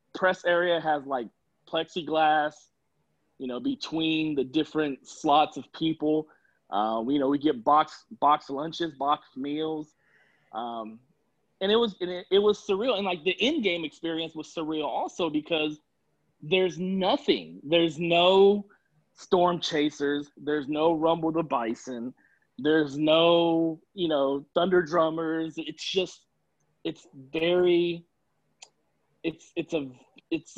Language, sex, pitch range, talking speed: English, male, 145-175 Hz, 135 wpm